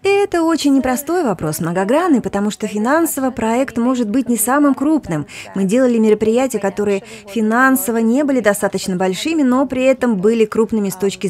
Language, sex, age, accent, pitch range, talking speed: Russian, female, 30-49, native, 185-245 Hz, 160 wpm